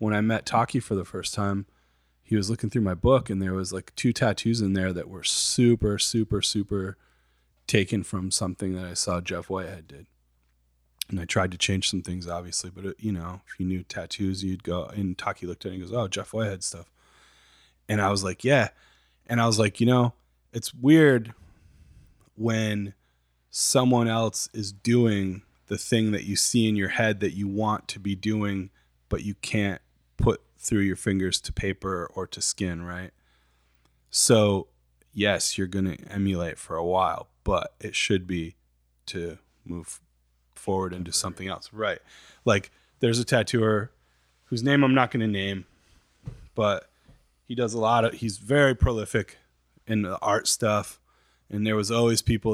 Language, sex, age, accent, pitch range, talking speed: English, male, 20-39, American, 85-110 Hz, 180 wpm